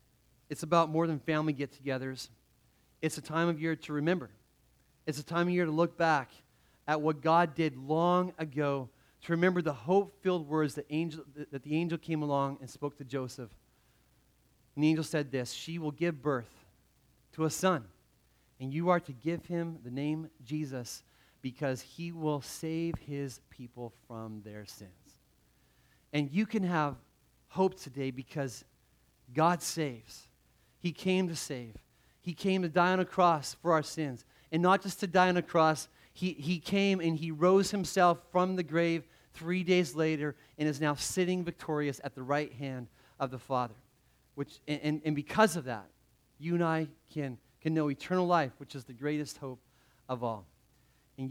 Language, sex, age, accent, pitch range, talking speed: English, male, 40-59, American, 130-170 Hz, 175 wpm